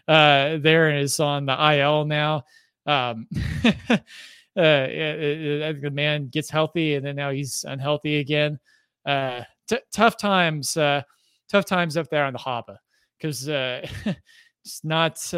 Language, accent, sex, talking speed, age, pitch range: English, American, male, 150 wpm, 20-39, 130-160 Hz